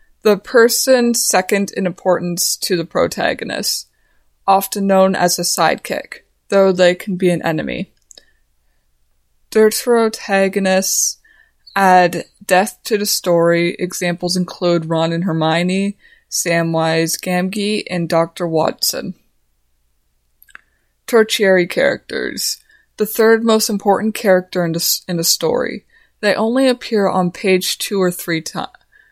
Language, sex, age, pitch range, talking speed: English, female, 20-39, 170-205 Hz, 115 wpm